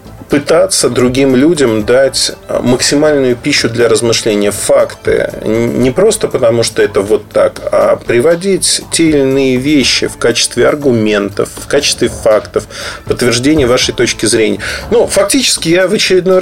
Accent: native